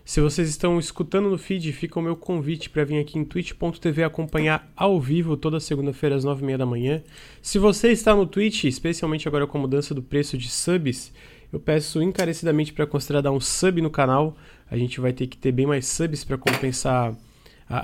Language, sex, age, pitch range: Portuguese, male, 20-39, 130-165 Hz